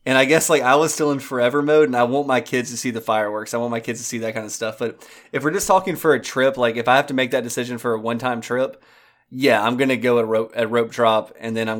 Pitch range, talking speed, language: 115-135 Hz, 310 wpm, English